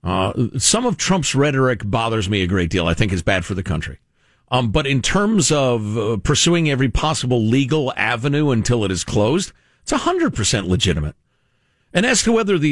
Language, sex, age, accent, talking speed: English, male, 50-69, American, 190 wpm